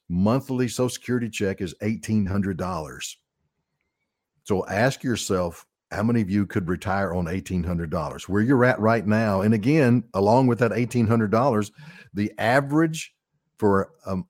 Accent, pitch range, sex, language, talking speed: American, 95-125 Hz, male, English, 135 wpm